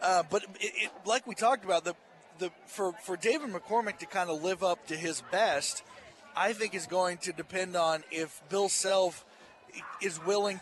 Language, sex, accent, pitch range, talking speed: English, male, American, 165-195 Hz, 190 wpm